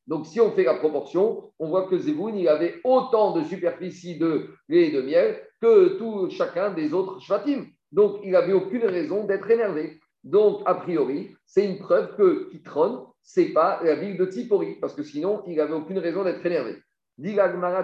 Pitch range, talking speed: 165-250 Hz, 195 wpm